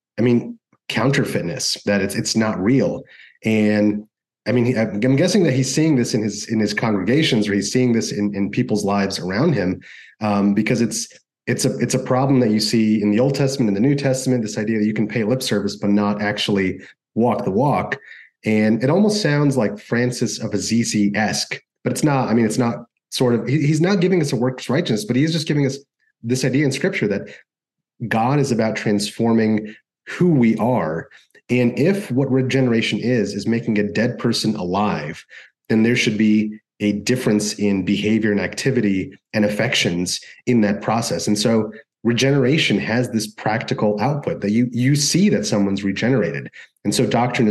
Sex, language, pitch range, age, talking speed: male, English, 105-130 Hz, 30-49, 190 wpm